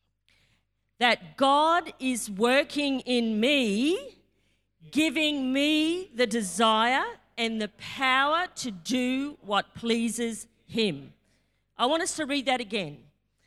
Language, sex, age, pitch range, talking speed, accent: English, female, 40-59, 210-290 Hz, 110 wpm, Australian